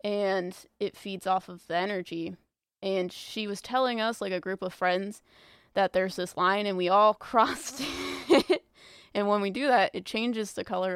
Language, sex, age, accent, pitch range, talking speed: English, female, 20-39, American, 175-200 Hz, 190 wpm